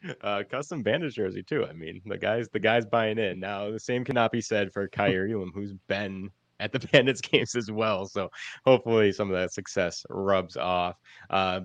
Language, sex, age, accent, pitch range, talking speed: English, male, 30-49, American, 90-115 Hz, 200 wpm